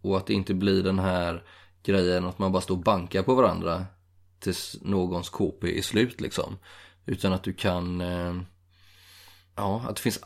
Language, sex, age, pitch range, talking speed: Swedish, male, 20-39, 90-100 Hz, 175 wpm